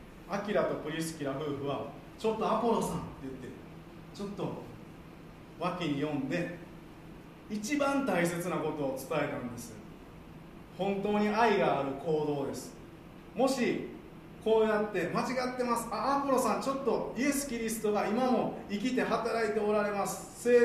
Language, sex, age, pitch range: Japanese, male, 40-59, 155-215 Hz